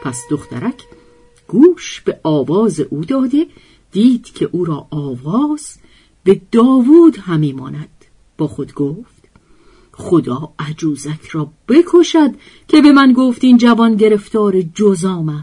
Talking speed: 115 wpm